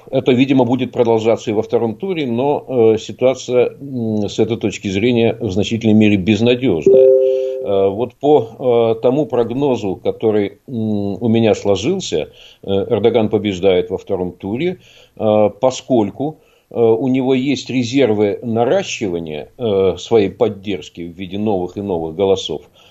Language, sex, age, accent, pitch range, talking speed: Russian, male, 50-69, native, 105-125 Hz, 140 wpm